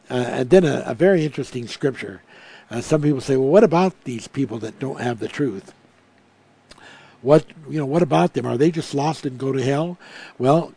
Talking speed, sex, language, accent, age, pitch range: 205 wpm, male, English, American, 60-79, 130-165 Hz